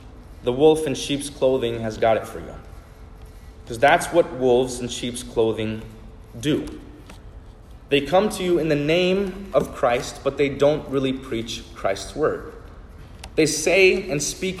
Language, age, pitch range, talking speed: English, 20-39, 110-150 Hz, 155 wpm